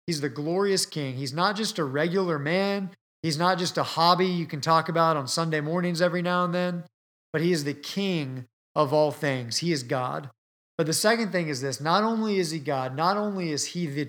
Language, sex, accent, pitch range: English, male, American, 145-180 Hz